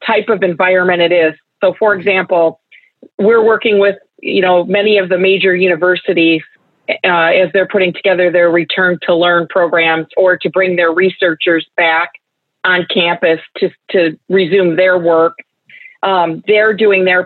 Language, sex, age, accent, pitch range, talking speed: English, female, 40-59, American, 170-195 Hz, 155 wpm